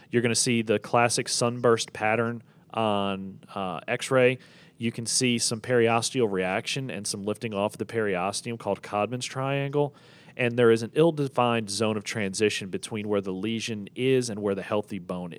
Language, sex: English, male